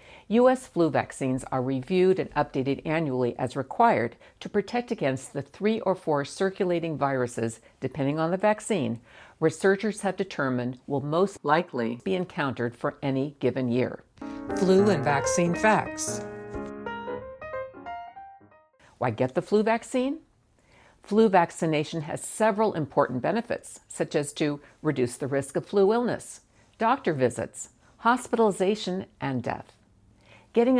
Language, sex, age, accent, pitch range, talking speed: English, female, 60-79, American, 130-205 Hz, 125 wpm